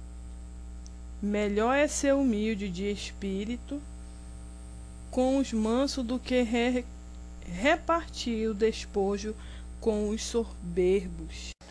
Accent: Brazilian